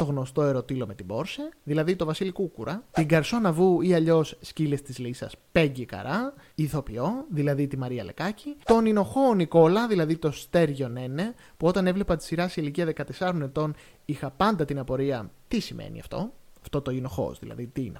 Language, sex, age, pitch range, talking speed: Greek, male, 20-39, 140-195 Hz, 180 wpm